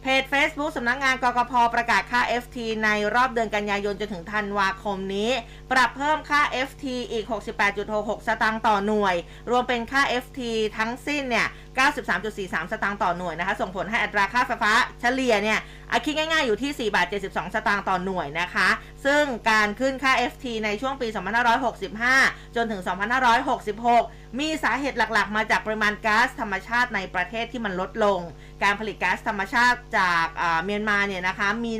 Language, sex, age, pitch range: Thai, female, 20-39, 200-240 Hz